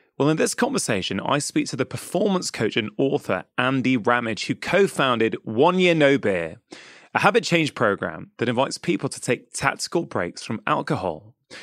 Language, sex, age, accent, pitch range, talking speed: English, male, 30-49, British, 115-160 Hz, 170 wpm